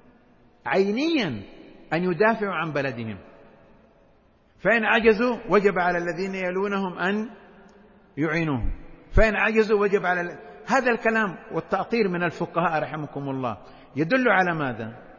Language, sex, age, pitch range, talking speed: Arabic, male, 50-69, 155-200 Hz, 105 wpm